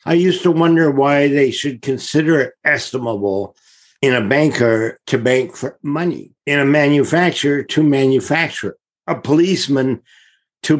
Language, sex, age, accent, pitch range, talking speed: English, male, 60-79, American, 120-160 Hz, 140 wpm